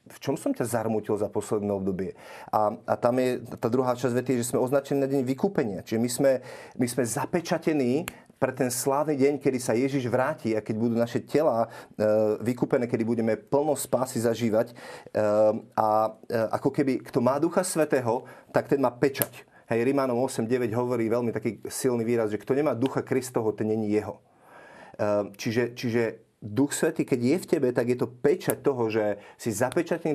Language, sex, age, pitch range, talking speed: Slovak, male, 40-59, 110-135 Hz, 180 wpm